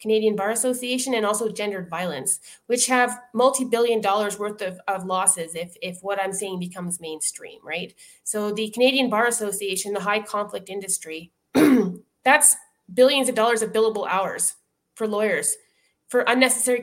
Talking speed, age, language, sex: 150 wpm, 20-39, English, female